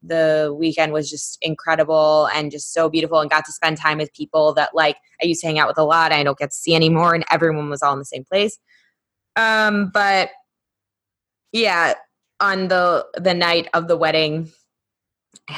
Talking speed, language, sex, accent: 200 wpm, English, female, American